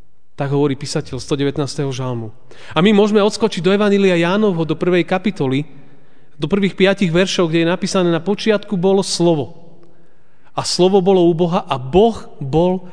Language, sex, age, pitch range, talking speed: Slovak, male, 40-59, 130-170 Hz, 160 wpm